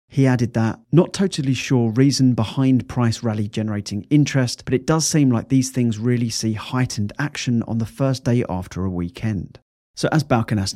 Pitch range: 110-135 Hz